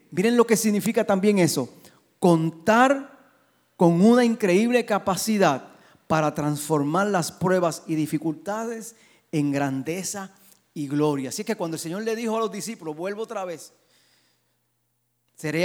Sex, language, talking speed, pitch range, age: male, Spanish, 135 wpm, 155-220 Hz, 30-49